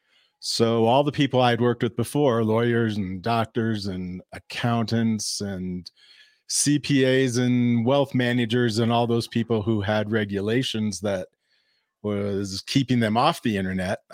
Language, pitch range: English, 100-125 Hz